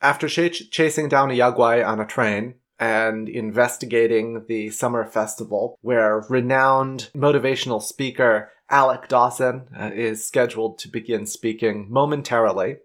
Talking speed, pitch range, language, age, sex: 115 wpm, 110-135 Hz, English, 30-49, male